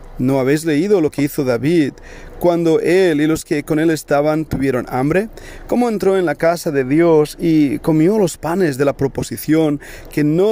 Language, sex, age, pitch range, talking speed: Spanish, male, 40-59, 145-175 Hz, 190 wpm